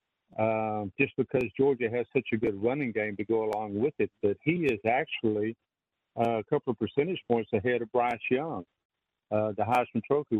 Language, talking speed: English, 185 wpm